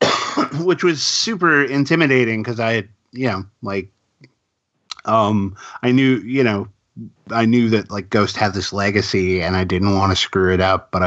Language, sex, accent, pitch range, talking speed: English, male, American, 95-125 Hz, 175 wpm